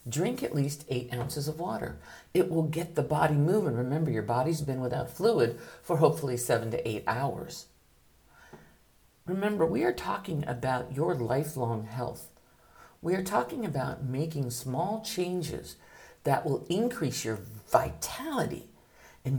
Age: 50-69